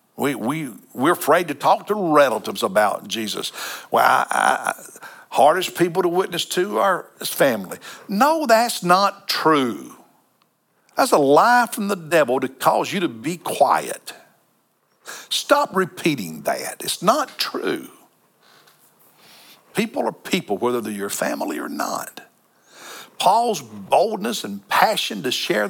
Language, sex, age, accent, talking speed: English, male, 60-79, American, 135 wpm